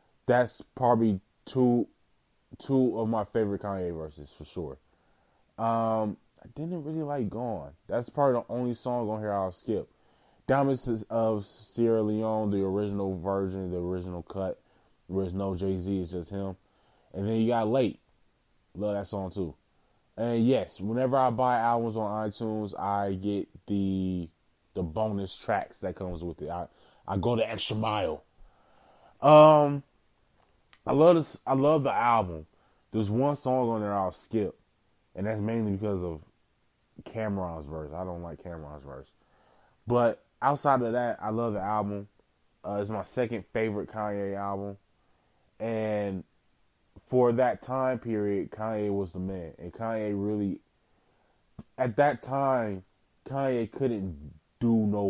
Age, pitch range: 20-39, 95-115 Hz